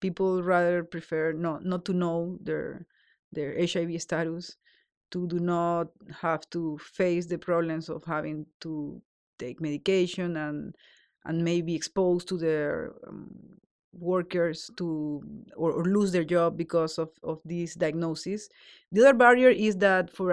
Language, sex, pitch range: English, female, 160-185 Hz